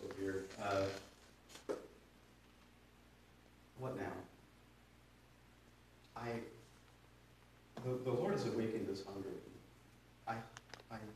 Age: 40-59